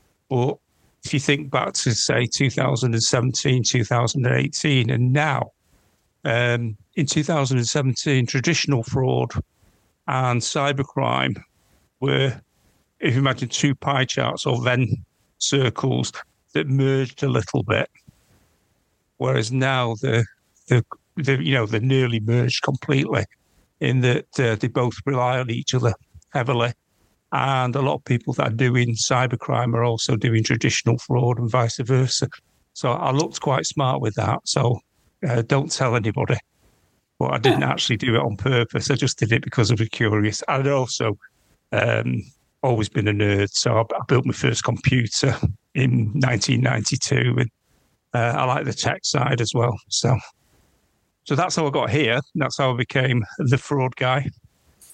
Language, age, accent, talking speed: English, 50-69, British, 150 wpm